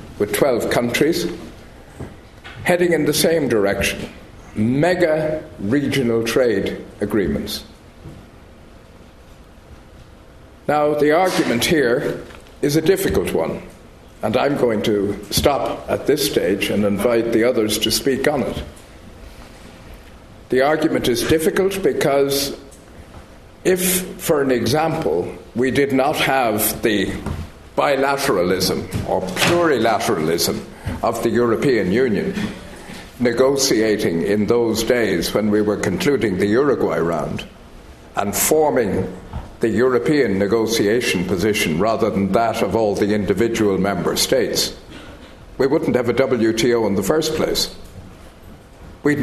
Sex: male